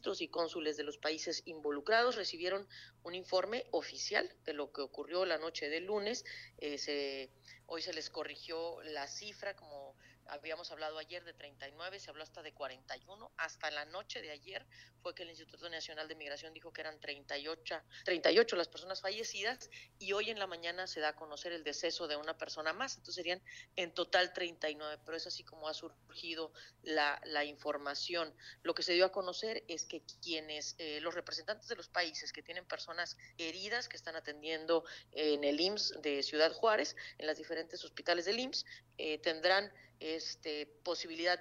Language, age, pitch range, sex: Spanish, 40-59, 150-180 Hz, female